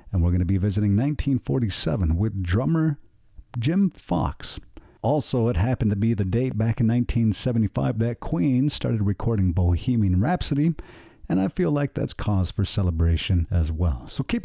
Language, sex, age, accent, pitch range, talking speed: English, male, 50-69, American, 100-145 Hz, 160 wpm